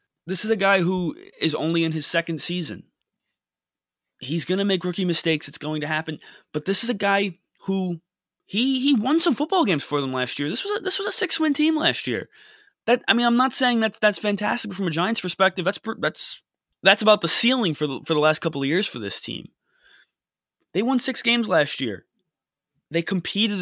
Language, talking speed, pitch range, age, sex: English, 220 wpm, 155-210 Hz, 20-39, male